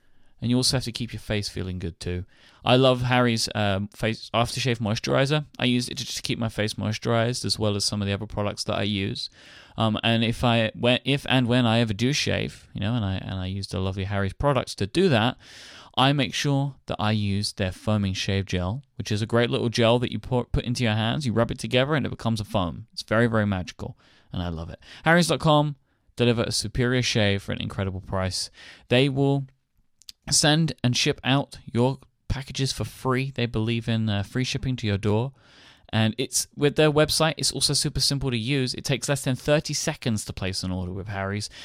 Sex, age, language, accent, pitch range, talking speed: male, 20-39, English, British, 105-135 Hz, 225 wpm